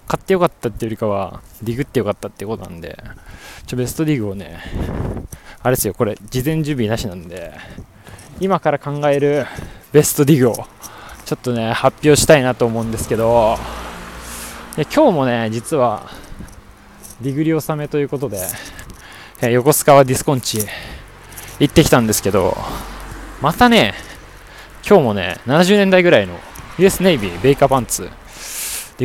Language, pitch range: Japanese, 100-145 Hz